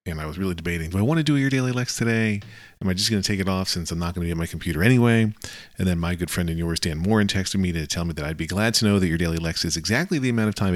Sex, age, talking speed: male, 40-59, 350 wpm